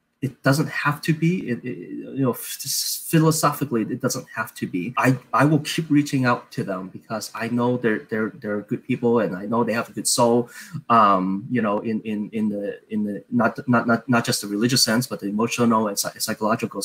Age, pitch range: 20-39, 110-135 Hz